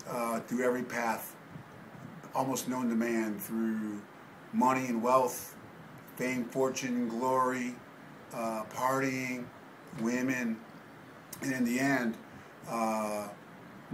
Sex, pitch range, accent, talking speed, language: male, 110-125 Hz, American, 100 wpm, English